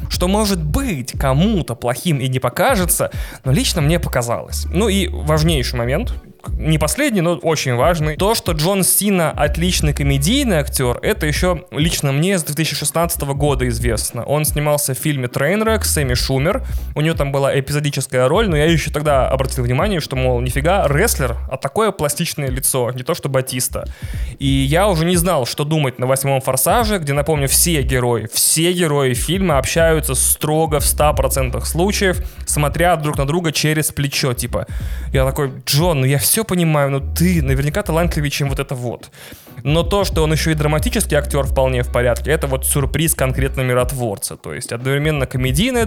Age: 20-39